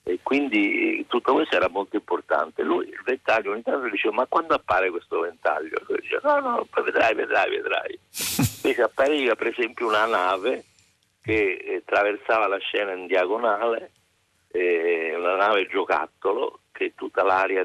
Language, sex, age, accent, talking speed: Italian, male, 50-69, native, 145 wpm